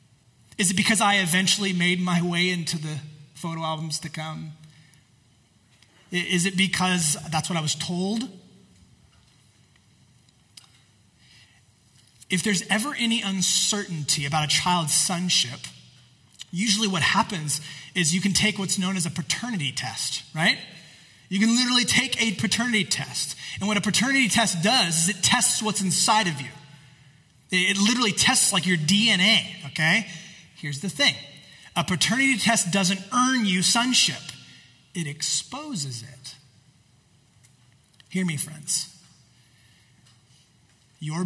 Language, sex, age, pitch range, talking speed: English, male, 20-39, 135-195 Hz, 130 wpm